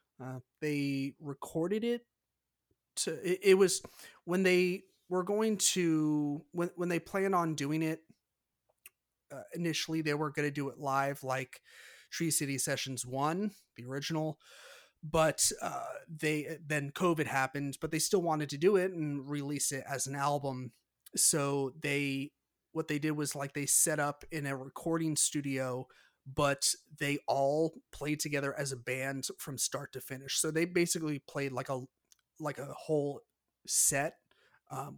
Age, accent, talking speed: 30-49, American, 160 wpm